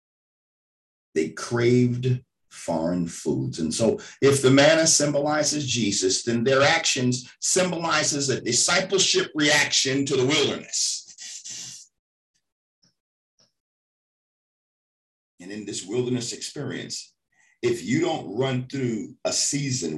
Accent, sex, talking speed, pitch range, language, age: American, male, 100 wpm, 125-160 Hz, English, 50-69